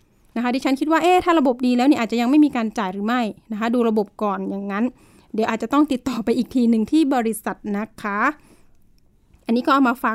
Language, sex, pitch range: Thai, female, 230-280 Hz